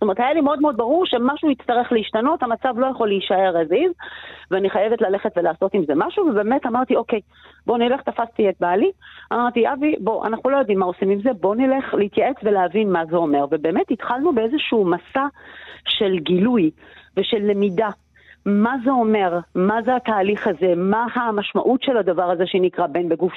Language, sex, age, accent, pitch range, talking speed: Hebrew, female, 40-59, native, 185-260 Hz, 180 wpm